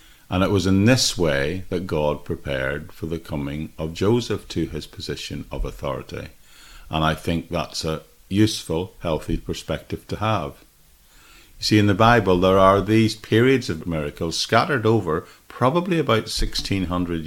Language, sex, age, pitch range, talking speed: English, male, 50-69, 80-105 Hz, 155 wpm